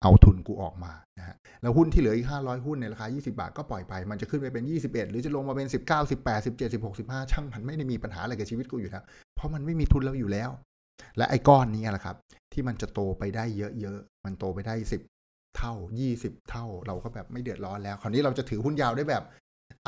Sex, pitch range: male, 105-135 Hz